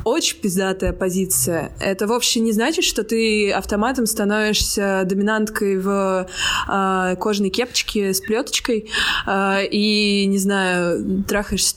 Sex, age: female, 20-39